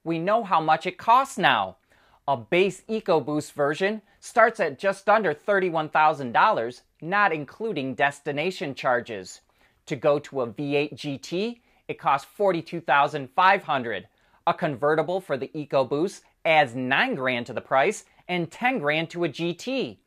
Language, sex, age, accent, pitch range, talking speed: English, male, 30-49, American, 130-195 Hz, 140 wpm